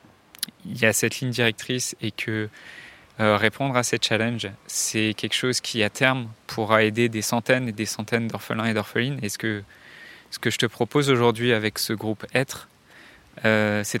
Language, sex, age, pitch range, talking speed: French, male, 20-39, 110-125 Hz, 190 wpm